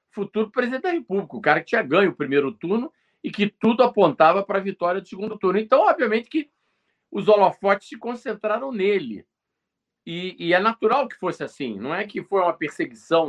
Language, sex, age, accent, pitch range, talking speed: Portuguese, male, 50-69, Brazilian, 150-240 Hz, 195 wpm